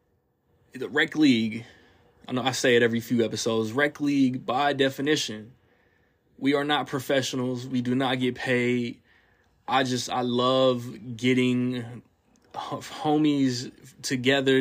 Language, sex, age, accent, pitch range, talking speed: English, male, 20-39, American, 120-140 Hz, 125 wpm